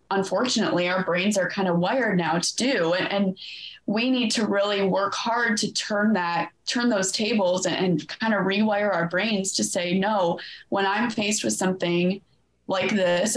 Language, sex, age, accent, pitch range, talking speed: English, female, 20-39, American, 180-215 Hz, 185 wpm